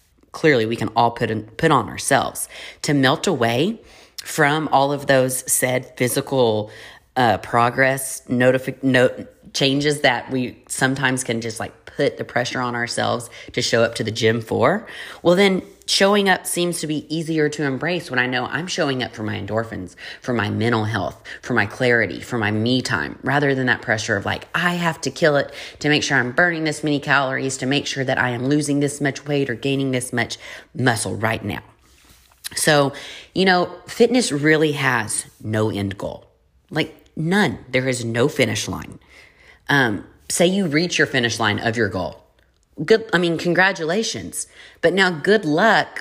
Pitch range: 115-160 Hz